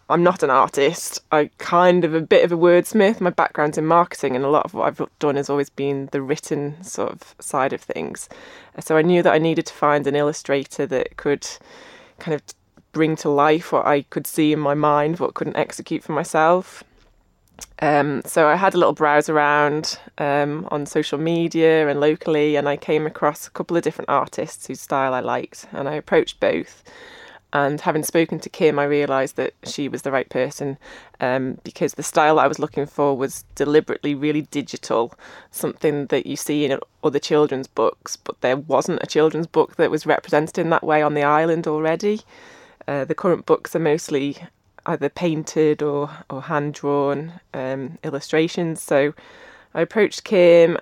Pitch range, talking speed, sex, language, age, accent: 145-170 Hz, 190 wpm, female, English, 20-39, British